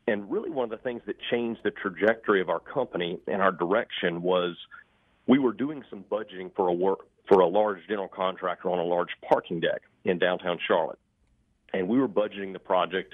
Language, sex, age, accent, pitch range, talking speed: English, male, 40-59, American, 95-120 Hz, 200 wpm